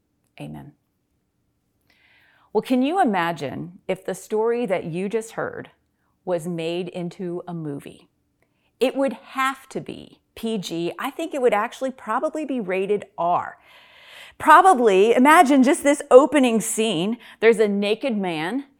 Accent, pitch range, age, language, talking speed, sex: American, 195-275 Hz, 40-59, English, 135 wpm, female